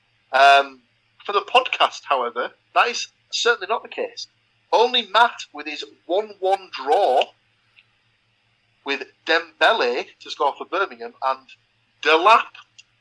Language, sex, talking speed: English, male, 115 wpm